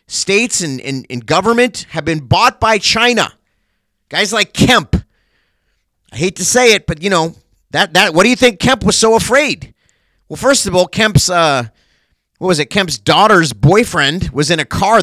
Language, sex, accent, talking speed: English, male, American, 190 wpm